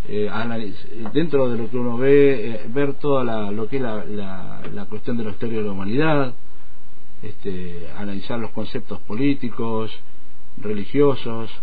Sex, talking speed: male, 160 wpm